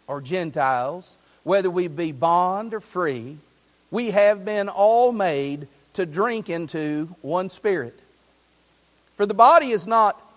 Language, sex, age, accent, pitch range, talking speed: English, male, 50-69, American, 150-235 Hz, 135 wpm